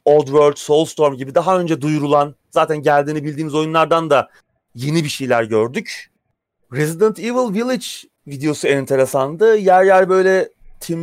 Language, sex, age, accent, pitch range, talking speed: Turkish, male, 30-49, native, 140-185 Hz, 140 wpm